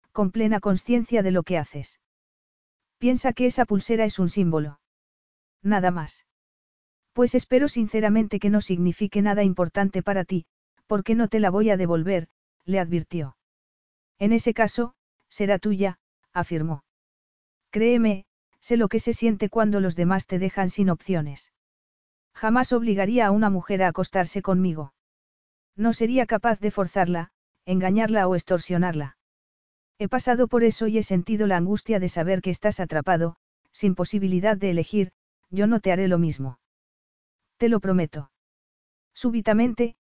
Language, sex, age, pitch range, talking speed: Spanish, female, 40-59, 180-220 Hz, 145 wpm